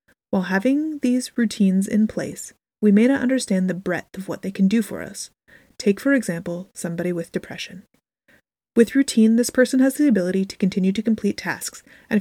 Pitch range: 185-225 Hz